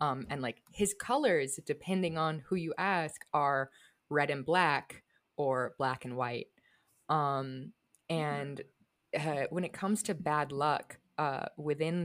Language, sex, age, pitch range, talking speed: English, female, 20-39, 140-180 Hz, 145 wpm